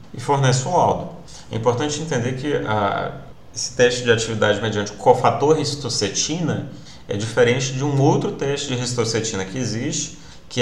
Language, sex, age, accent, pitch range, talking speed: Portuguese, male, 30-49, Brazilian, 110-145 Hz, 155 wpm